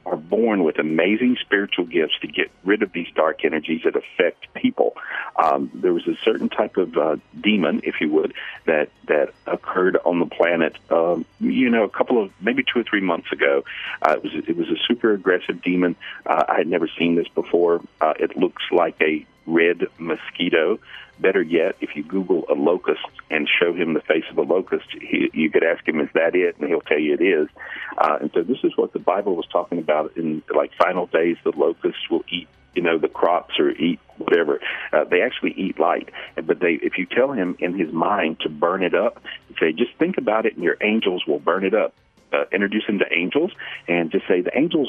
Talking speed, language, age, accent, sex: 220 wpm, English, 50-69, American, male